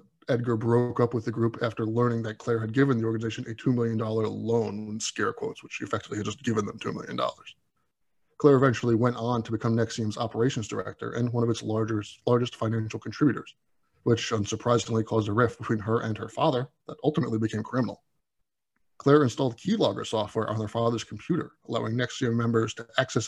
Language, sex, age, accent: English, male, 20-39, American